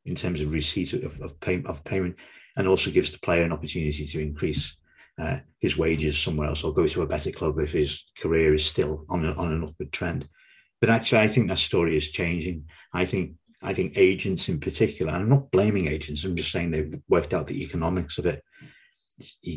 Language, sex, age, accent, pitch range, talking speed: English, male, 50-69, British, 75-95 Hz, 220 wpm